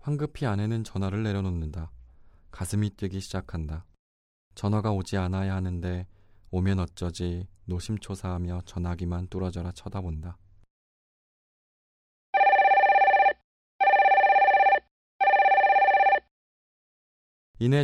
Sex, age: male, 20-39